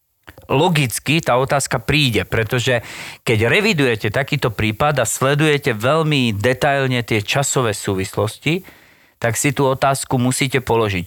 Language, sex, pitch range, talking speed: Slovak, male, 110-140 Hz, 120 wpm